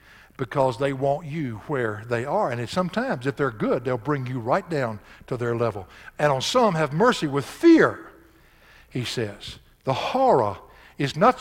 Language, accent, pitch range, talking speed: English, American, 135-190 Hz, 175 wpm